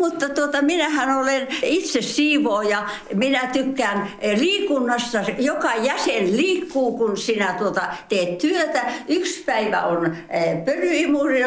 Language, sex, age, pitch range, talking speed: Finnish, female, 60-79, 205-290 Hz, 115 wpm